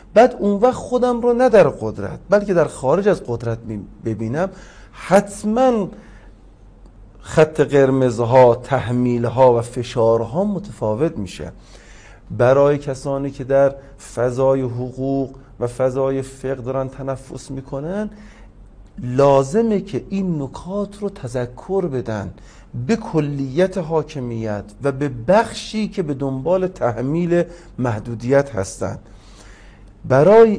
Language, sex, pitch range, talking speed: Persian, male, 115-175 Hz, 105 wpm